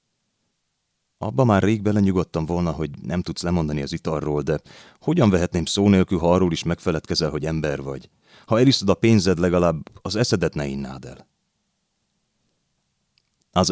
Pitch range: 75-105 Hz